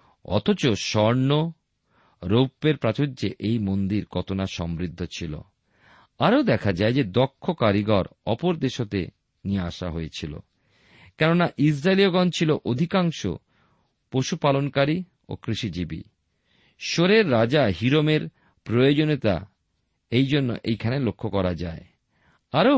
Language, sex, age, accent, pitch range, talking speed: Bengali, male, 50-69, native, 100-145 Hz, 105 wpm